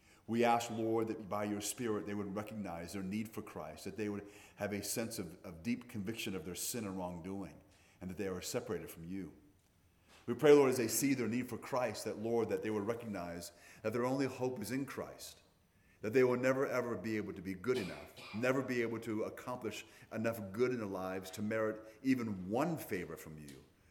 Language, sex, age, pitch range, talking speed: English, male, 40-59, 90-110 Hz, 220 wpm